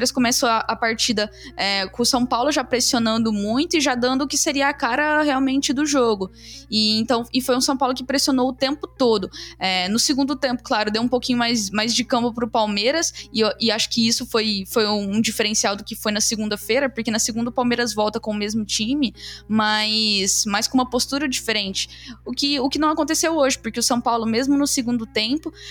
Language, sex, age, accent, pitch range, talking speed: Portuguese, female, 10-29, Brazilian, 225-275 Hz, 220 wpm